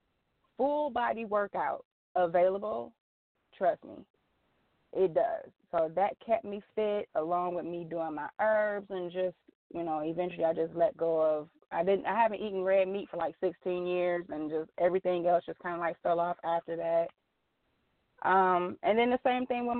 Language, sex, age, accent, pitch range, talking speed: English, female, 20-39, American, 165-200 Hz, 175 wpm